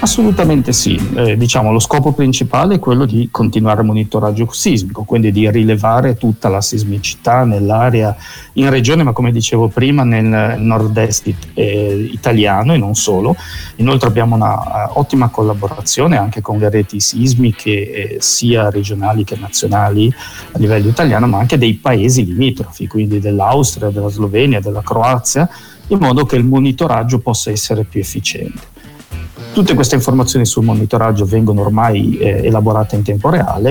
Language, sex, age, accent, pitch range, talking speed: Italian, male, 40-59, native, 105-125 Hz, 150 wpm